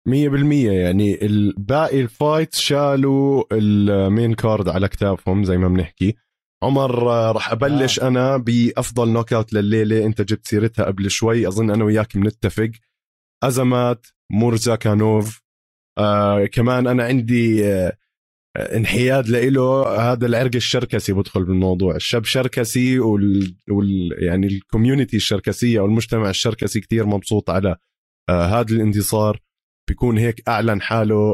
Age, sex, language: 20-39, male, Arabic